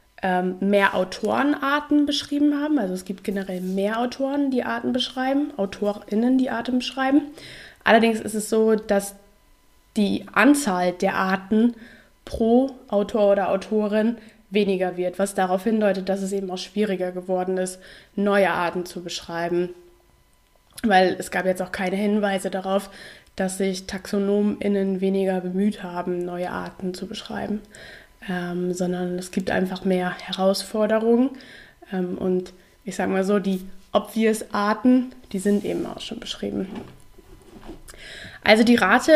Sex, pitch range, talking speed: female, 190-230 Hz, 135 wpm